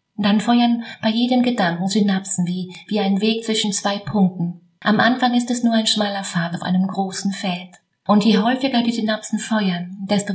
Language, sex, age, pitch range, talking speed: German, female, 30-49, 180-215 Hz, 185 wpm